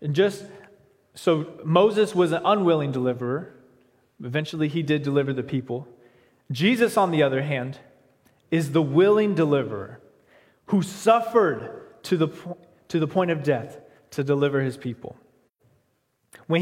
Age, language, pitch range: 20-39, English, 140-205 Hz